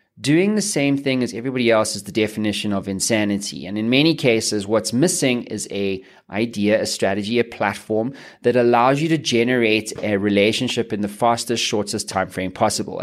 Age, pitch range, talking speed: 20-39, 105-130 Hz, 180 wpm